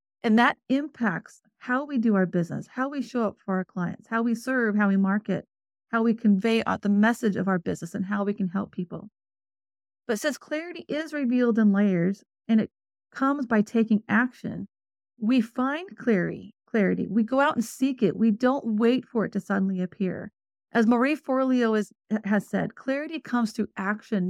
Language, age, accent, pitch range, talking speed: English, 30-49, American, 195-245 Hz, 190 wpm